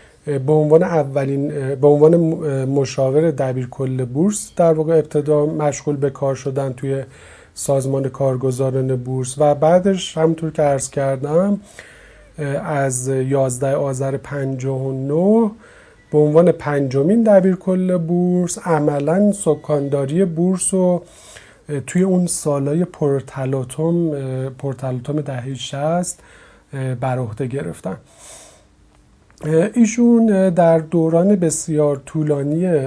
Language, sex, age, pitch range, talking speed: Persian, male, 30-49, 130-160 Hz, 95 wpm